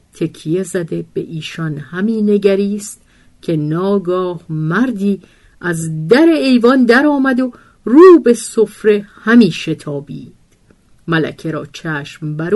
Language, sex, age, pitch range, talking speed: Persian, female, 50-69, 170-230 Hz, 115 wpm